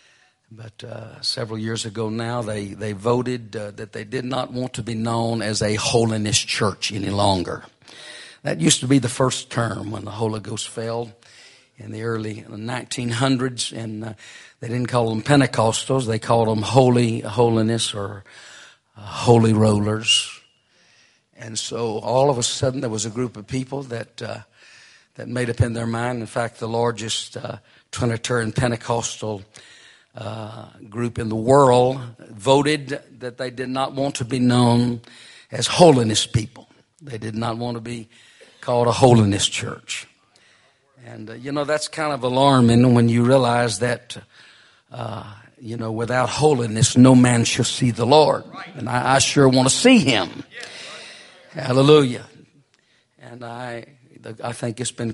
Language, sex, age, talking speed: English, male, 50-69, 160 wpm